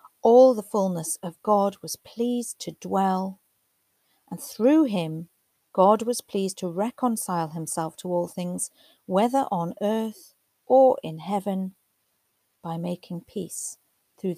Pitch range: 170-220 Hz